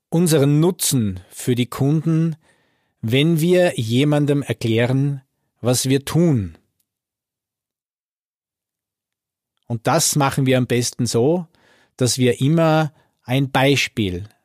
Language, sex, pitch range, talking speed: German, male, 115-150 Hz, 100 wpm